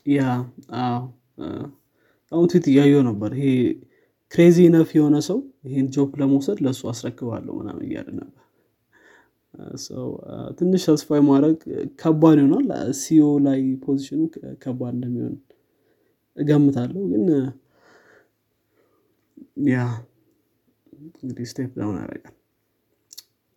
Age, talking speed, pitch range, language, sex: 20-39, 75 wpm, 125-160 Hz, Amharic, male